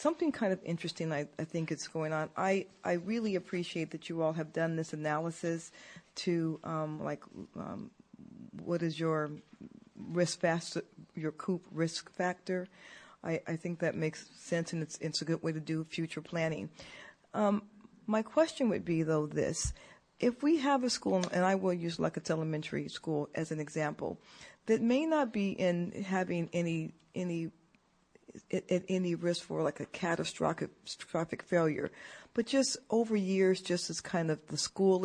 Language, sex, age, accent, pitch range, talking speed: English, female, 40-59, American, 160-195 Hz, 170 wpm